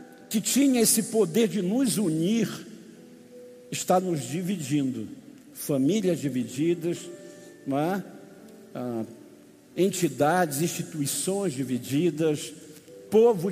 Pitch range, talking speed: 150-200 Hz, 75 wpm